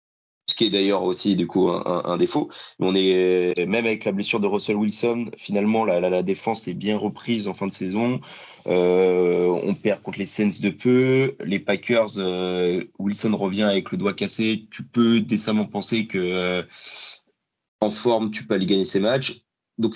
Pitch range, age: 90-110 Hz, 30-49